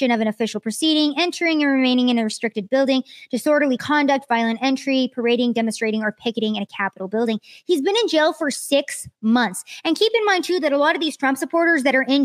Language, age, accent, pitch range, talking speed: English, 20-39, American, 250-320 Hz, 220 wpm